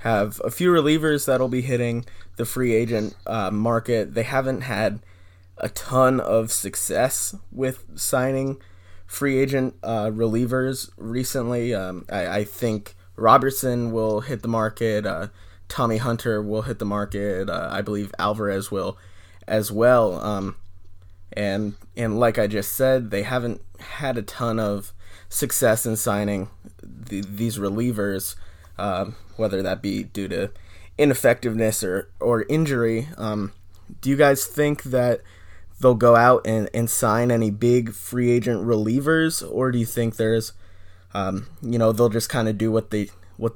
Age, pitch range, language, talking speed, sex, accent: 20-39, 100-120 Hz, English, 155 wpm, male, American